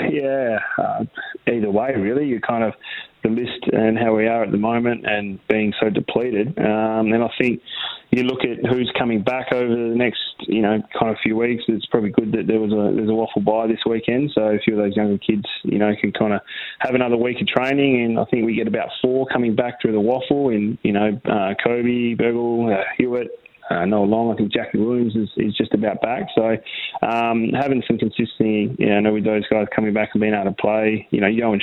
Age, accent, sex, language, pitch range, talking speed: 20-39, Australian, male, English, 105-115 Hz, 230 wpm